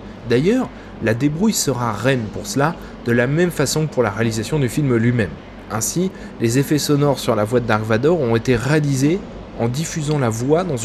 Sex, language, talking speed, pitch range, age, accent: male, French, 200 wpm, 115-165 Hz, 20-39, French